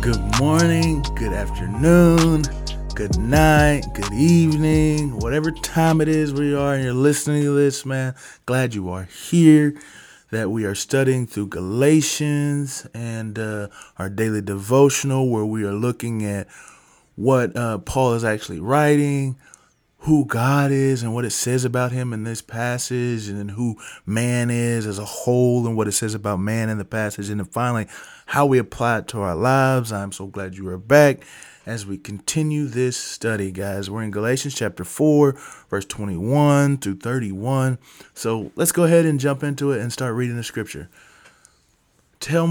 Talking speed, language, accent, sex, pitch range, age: 170 wpm, English, American, male, 105-140 Hz, 20-39